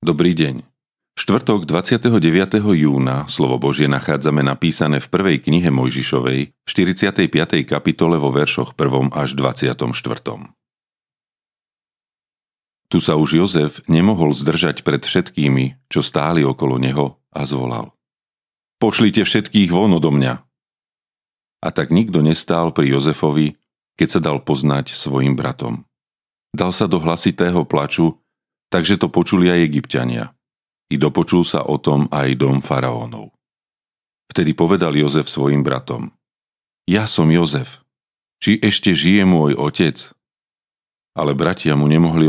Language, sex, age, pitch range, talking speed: Slovak, male, 40-59, 70-85 Hz, 120 wpm